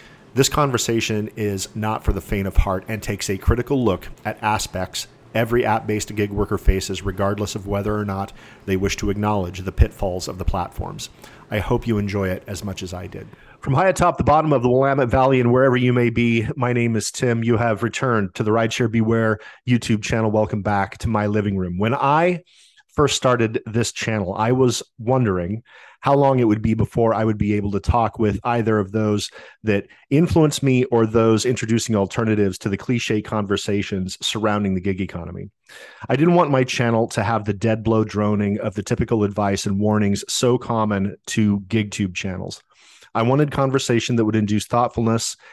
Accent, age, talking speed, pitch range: American, 40-59, 195 wpm, 100-120 Hz